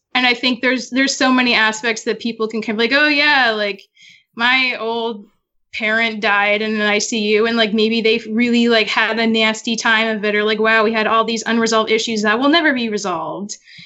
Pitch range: 210-260 Hz